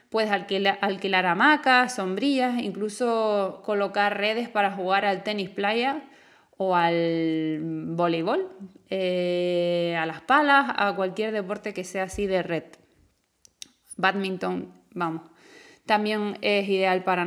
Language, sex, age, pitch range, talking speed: Spanish, female, 20-39, 185-220 Hz, 120 wpm